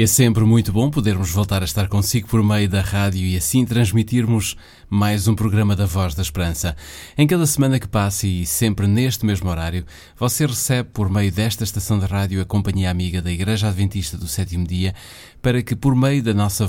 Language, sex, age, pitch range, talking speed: Portuguese, male, 20-39, 95-110 Hz, 200 wpm